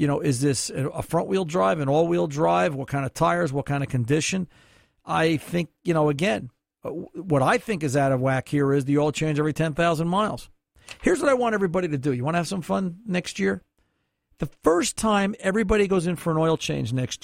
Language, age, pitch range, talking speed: English, 50-69, 135-180 Hz, 225 wpm